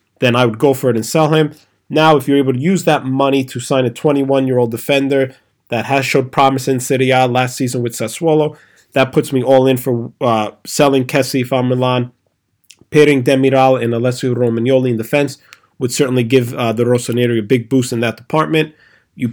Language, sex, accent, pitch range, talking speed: English, male, American, 120-140 Hz, 195 wpm